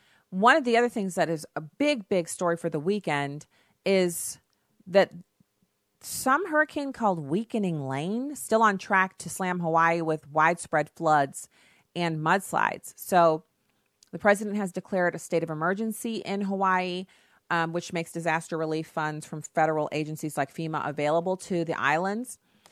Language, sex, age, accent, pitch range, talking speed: English, female, 30-49, American, 155-190 Hz, 155 wpm